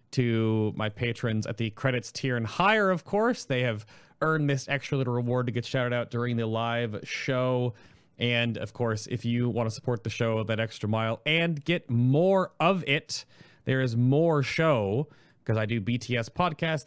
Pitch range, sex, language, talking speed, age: 110-145 Hz, male, English, 190 wpm, 30-49